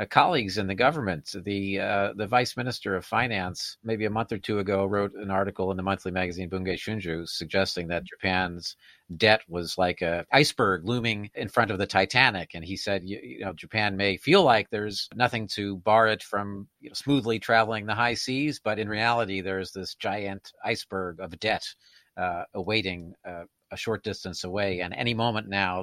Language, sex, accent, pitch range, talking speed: English, male, American, 90-110 Hz, 195 wpm